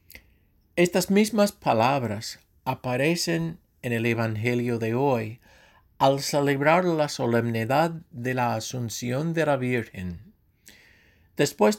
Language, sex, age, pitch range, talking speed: English, male, 60-79, 115-160 Hz, 100 wpm